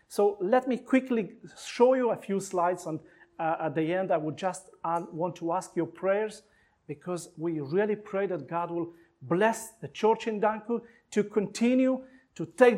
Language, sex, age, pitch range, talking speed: English, male, 40-59, 160-210 Hz, 185 wpm